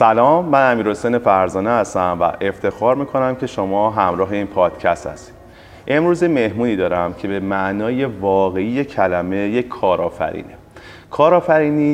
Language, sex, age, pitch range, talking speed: Persian, male, 30-49, 95-120 Hz, 135 wpm